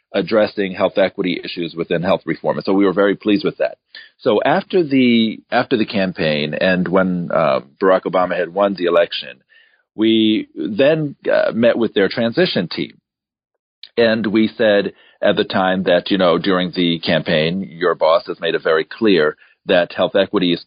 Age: 40-59